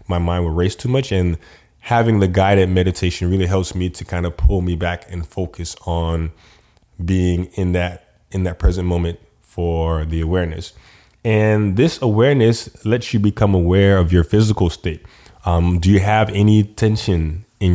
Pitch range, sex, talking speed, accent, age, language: 85-105 Hz, male, 170 wpm, American, 20-39, English